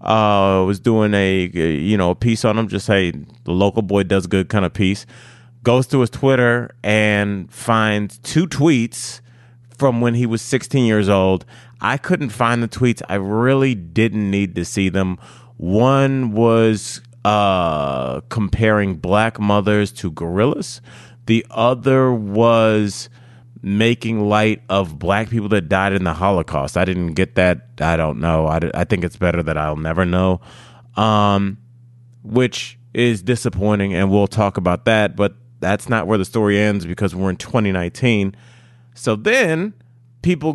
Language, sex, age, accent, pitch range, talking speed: English, male, 30-49, American, 100-120 Hz, 160 wpm